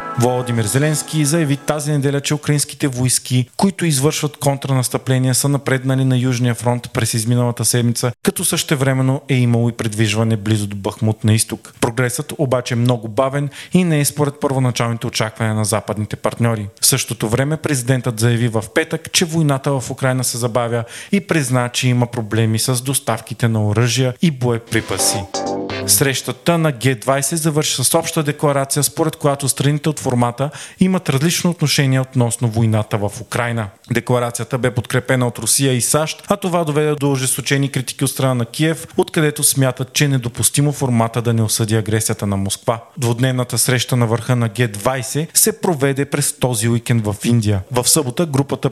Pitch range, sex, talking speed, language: 120-145 Hz, male, 165 wpm, Bulgarian